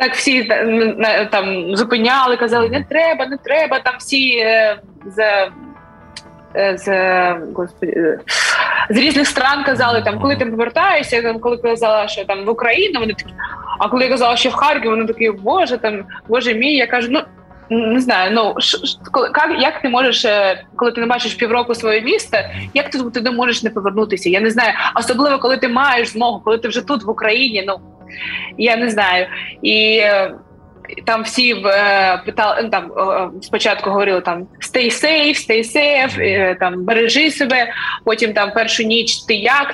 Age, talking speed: 20-39, 170 wpm